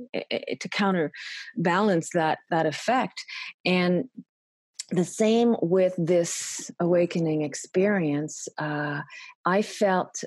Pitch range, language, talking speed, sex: 155-195 Hz, English, 90 wpm, female